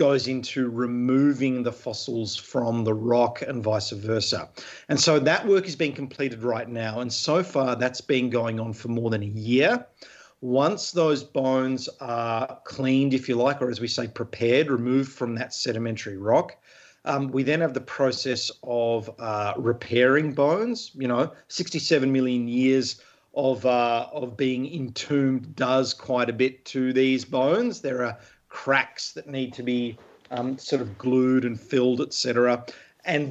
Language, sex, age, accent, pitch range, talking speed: English, male, 40-59, Australian, 120-135 Hz, 165 wpm